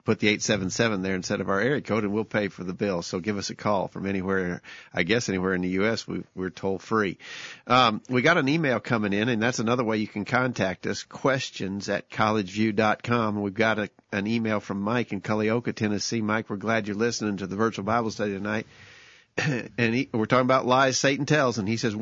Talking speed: 220 wpm